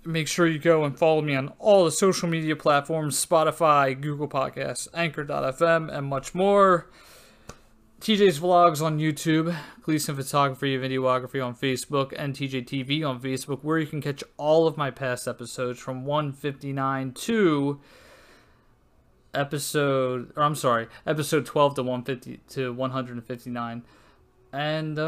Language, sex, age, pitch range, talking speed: English, male, 20-39, 130-155 Hz, 130 wpm